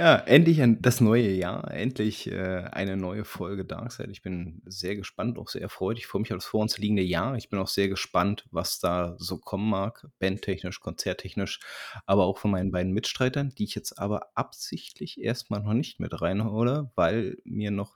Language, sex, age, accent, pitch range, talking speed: German, male, 30-49, German, 100-115 Hz, 195 wpm